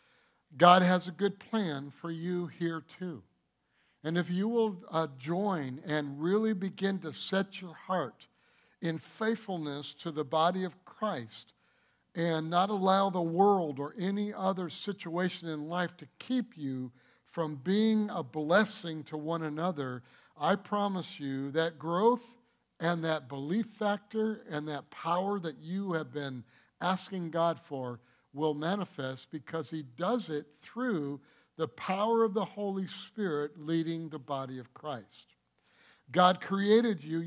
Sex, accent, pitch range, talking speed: male, American, 150-195 Hz, 145 wpm